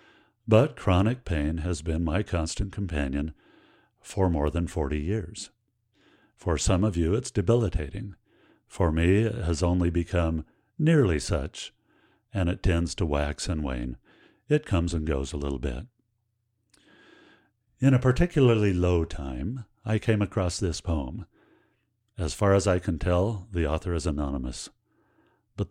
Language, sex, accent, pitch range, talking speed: English, male, American, 85-115 Hz, 145 wpm